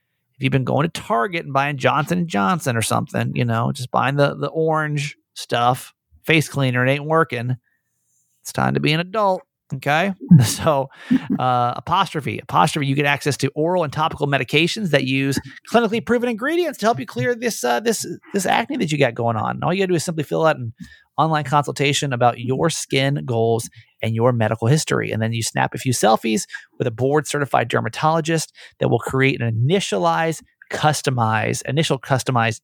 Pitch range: 125-165 Hz